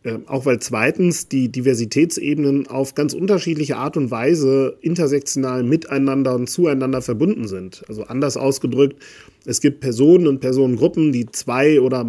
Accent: German